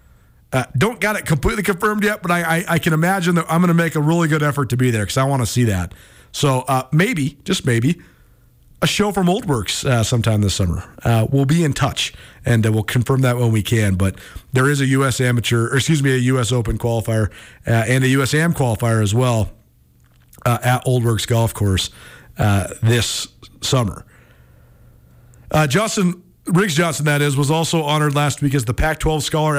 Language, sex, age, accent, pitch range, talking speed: English, male, 50-69, American, 120-160 Hz, 205 wpm